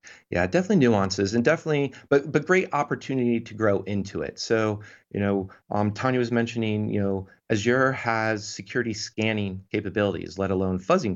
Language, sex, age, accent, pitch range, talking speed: English, male, 30-49, American, 95-115 Hz, 160 wpm